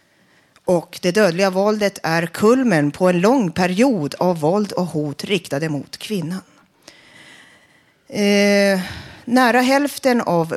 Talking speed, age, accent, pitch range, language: 120 wpm, 40-59, native, 155-210 Hz, Swedish